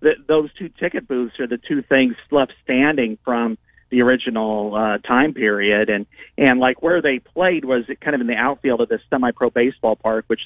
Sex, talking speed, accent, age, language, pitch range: male, 205 wpm, American, 40-59, English, 115-140 Hz